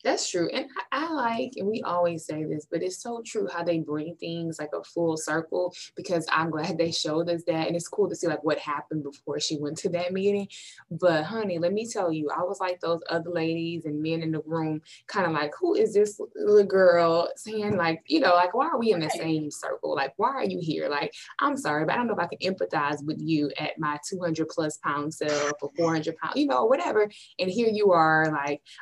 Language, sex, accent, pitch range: English, female, American, 155-200 Hz